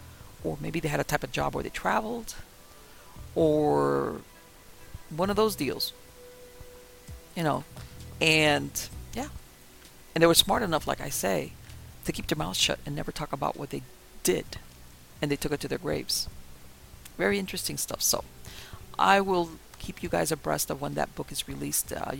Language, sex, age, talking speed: English, female, 50-69, 175 wpm